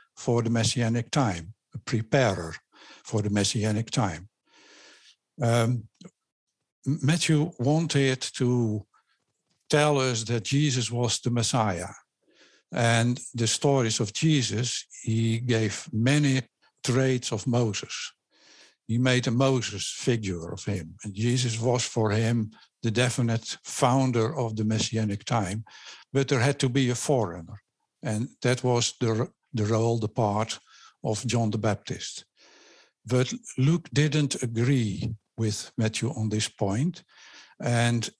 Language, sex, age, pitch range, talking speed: English, male, 60-79, 115-135 Hz, 125 wpm